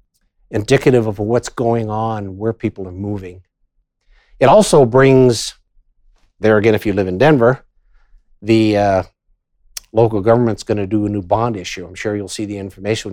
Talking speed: 165 wpm